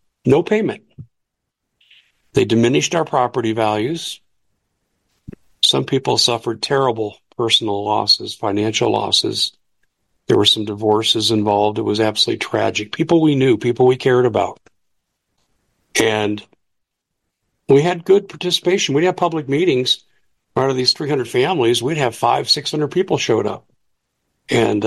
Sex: male